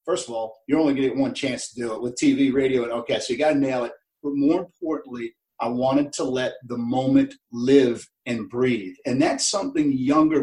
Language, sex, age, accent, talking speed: English, male, 40-59, American, 230 wpm